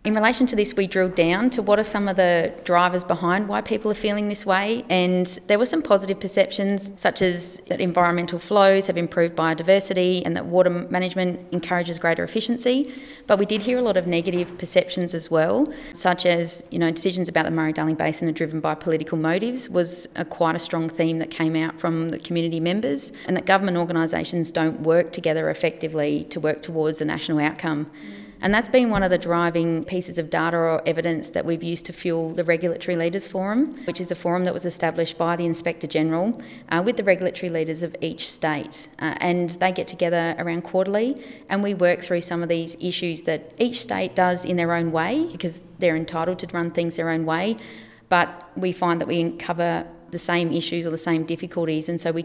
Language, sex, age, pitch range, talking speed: English, female, 30-49, 165-185 Hz, 210 wpm